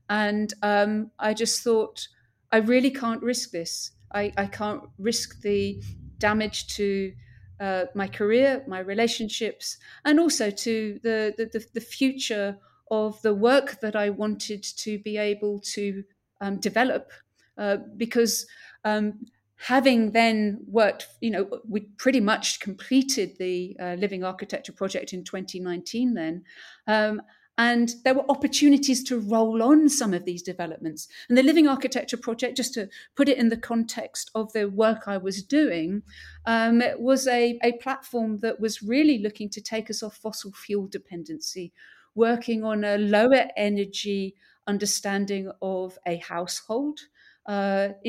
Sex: female